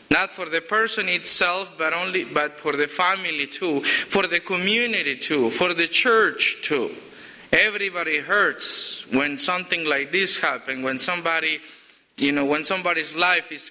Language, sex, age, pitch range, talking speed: English, male, 30-49, 155-200 Hz, 155 wpm